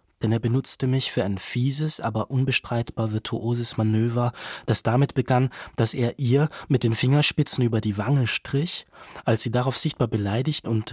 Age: 20-39